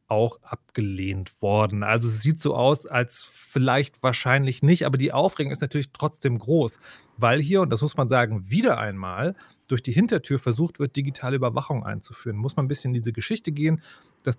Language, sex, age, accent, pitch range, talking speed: German, male, 30-49, German, 120-165 Hz, 190 wpm